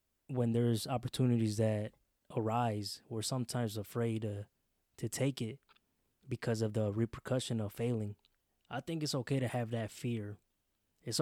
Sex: male